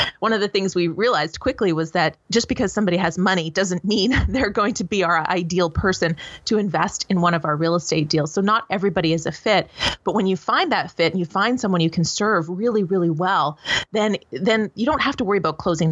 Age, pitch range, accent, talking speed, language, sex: 30-49, 170-205 Hz, American, 240 wpm, English, female